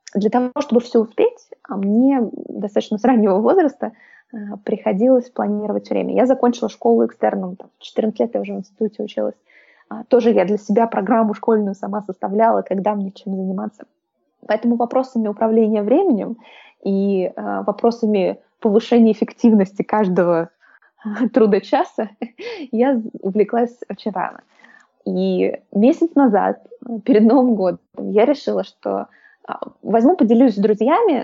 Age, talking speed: 20-39, 125 wpm